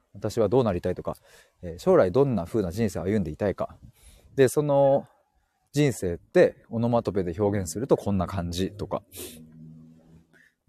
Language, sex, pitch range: Japanese, male, 95-155 Hz